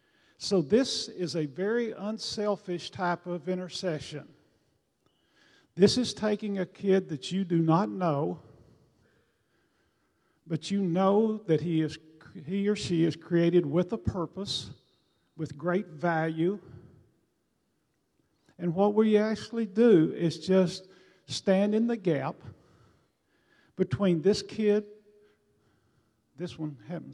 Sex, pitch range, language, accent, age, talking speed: male, 155-190 Hz, English, American, 50-69, 115 wpm